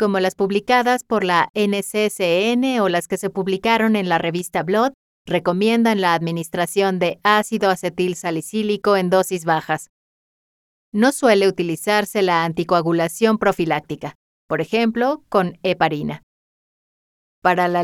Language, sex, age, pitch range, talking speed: Spanish, female, 30-49, 170-220 Hz, 125 wpm